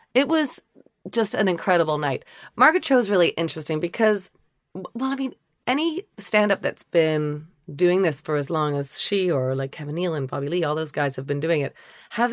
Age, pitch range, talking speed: 30-49, 145-195 Hz, 200 wpm